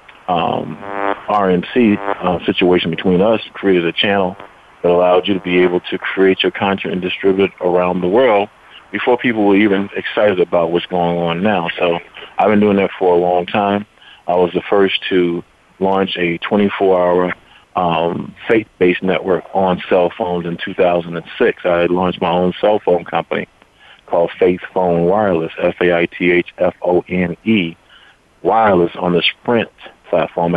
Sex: male